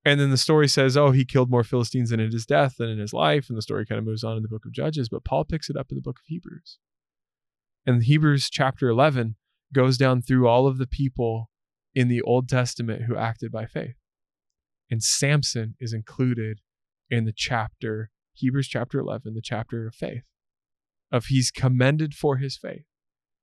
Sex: male